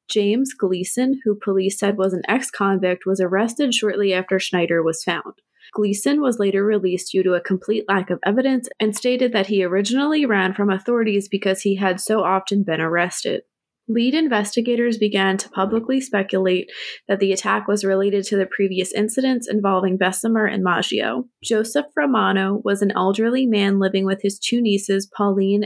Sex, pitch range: female, 190-220 Hz